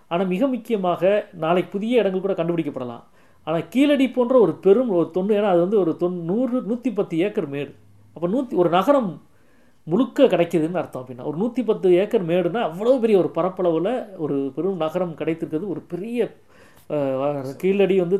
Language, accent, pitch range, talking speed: Tamil, native, 150-200 Hz, 155 wpm